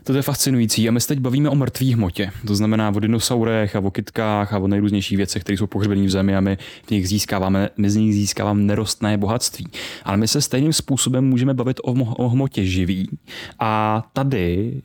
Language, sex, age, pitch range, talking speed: Czech, male, 20-39, 100-115 Hz, 200 wpm